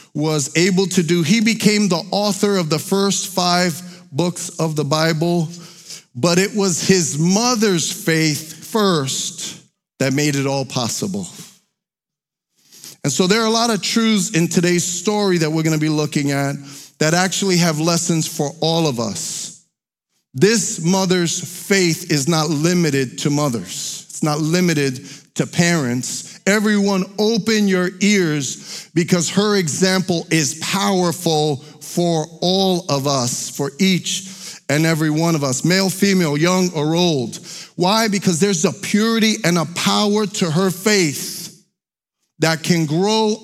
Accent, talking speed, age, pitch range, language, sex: American, 145 wpm, 40-59, 155-195 Hz, English, male